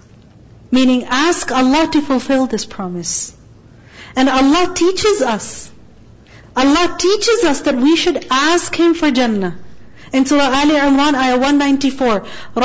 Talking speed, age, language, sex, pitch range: 130 wpm, 40-59, English, female, 225-290 Hz